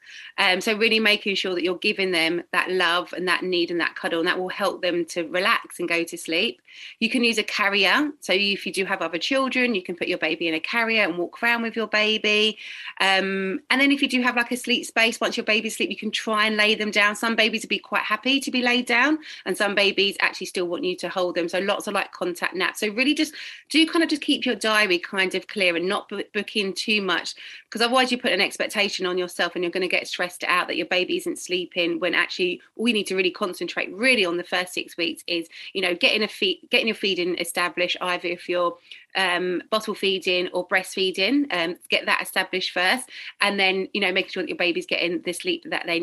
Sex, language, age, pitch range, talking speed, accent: female, English, 30-49, 180-225 Hz, 250 wpm, British